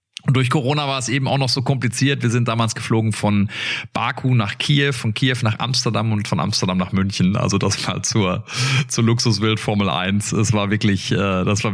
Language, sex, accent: German, male, German